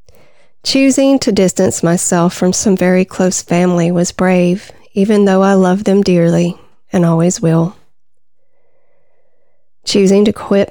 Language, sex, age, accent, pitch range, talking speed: English, female, 40-59, American, 180-210 Hz, 130 wpm